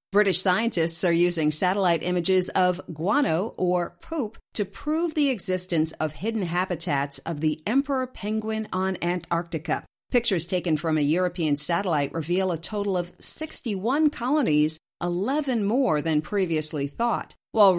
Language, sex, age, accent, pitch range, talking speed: English, female, 50-69, American, 160-225 Hz, 140 wpm